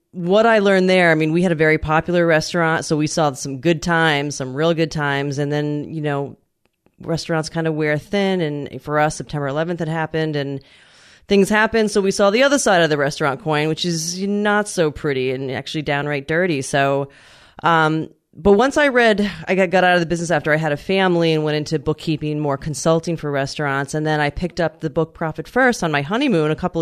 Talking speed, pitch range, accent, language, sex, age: 220 wpm, 145-180 Hz, American, English, female, 30-49